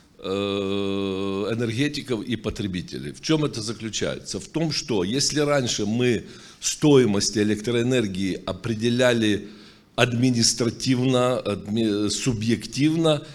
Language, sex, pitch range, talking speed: Ukrainian, male, 110-140 Hz, 80 wpm